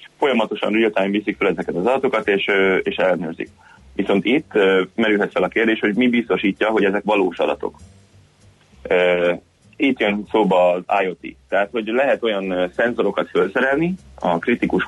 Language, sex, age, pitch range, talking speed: Hungarian, male, 30-49, 85-110 Hz, 150 wpm